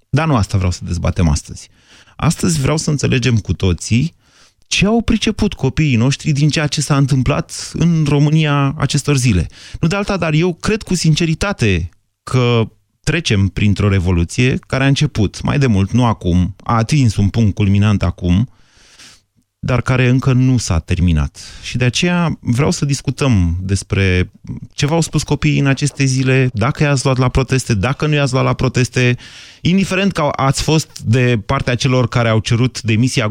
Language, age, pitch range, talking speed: Romanian, 30-49, 95-135 Hz, 170 wpm